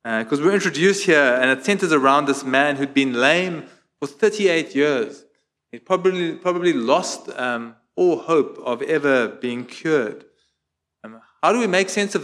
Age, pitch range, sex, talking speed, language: 30-49, 130-180 Hz, male, 170 wpm, English